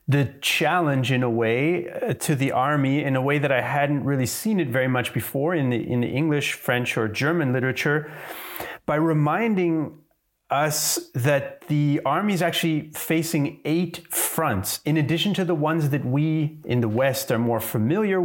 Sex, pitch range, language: male, 125-160 Hz, English